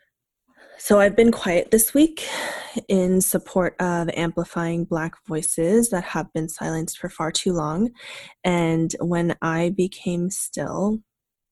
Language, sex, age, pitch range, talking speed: English, female, 20-39, 170-200 Hz, 130 wpm